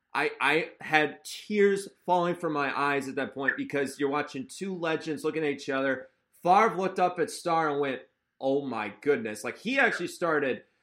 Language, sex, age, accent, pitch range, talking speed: English, male, 30-49, American, 125-150 Hz, 190 wpm